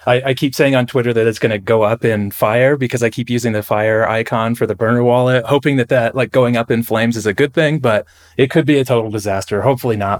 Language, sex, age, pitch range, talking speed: English, male, 30-49, 105-125 Hz, 270 wpm